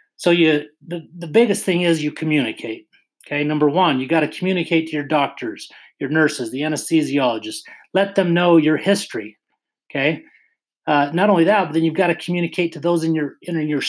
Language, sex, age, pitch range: English, male, 30-49, 140-180 Hz